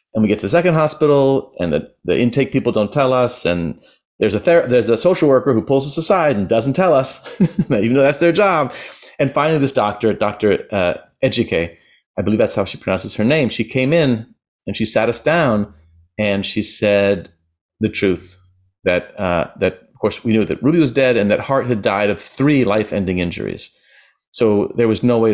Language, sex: English, male